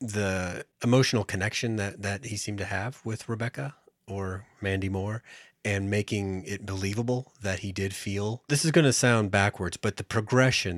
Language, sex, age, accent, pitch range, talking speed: English, male, 30-49, American, 90-110 Hz, 175 wpm